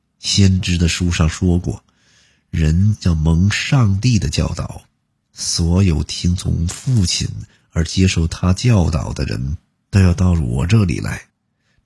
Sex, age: male, 50-69